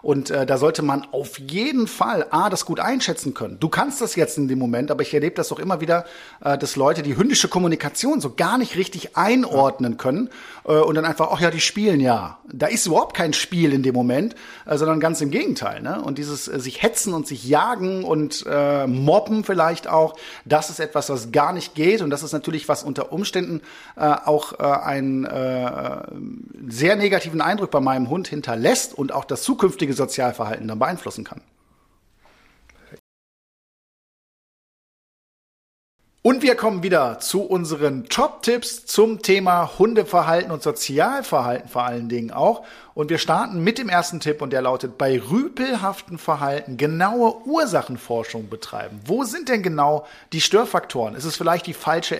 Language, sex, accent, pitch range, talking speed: German, male, German, 140-195 Hz, 175 wpm